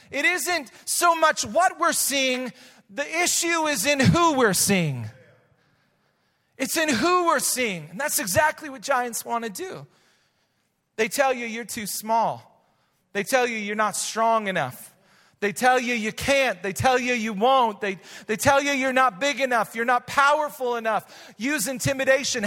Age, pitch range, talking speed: 40-59, 225-300 Hz, 170 wpm